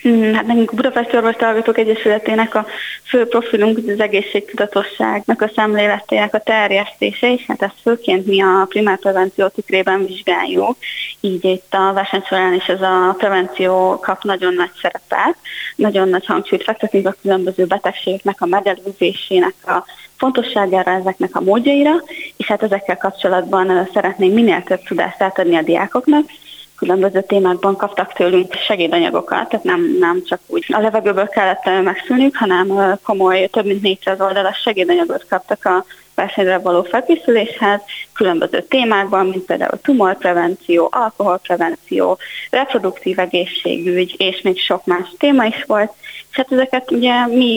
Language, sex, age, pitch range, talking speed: Hungarian, female, 20-39, 185-225 Hz, 135 wpm